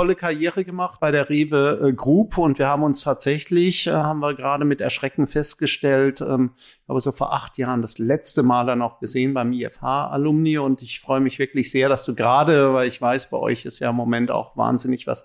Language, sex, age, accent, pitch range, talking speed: German, male, 50-69, German, 125-155 Hz, 205 wpm